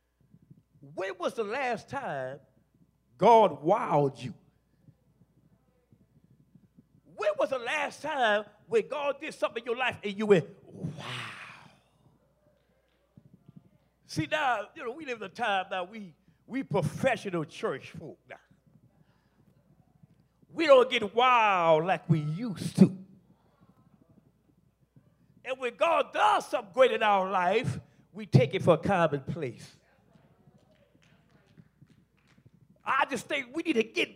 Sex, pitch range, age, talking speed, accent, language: male, 180-295 Hz, 50-69, 125 wpm, American, English